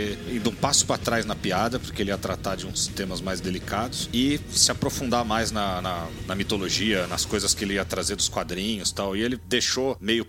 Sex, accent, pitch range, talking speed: male, Brazilian, 95-120 Hz, 220 wpm